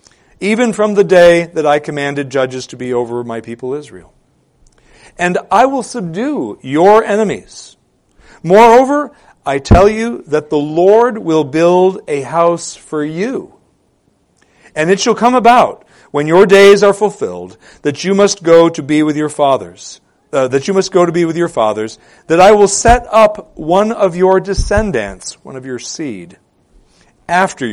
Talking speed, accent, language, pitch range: 165 wpm, American, English, 135-200 Hz